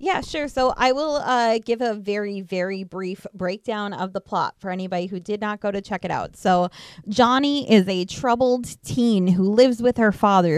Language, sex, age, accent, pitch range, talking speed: English, female, 20-39, American, 195-265 Hz, 205 wpm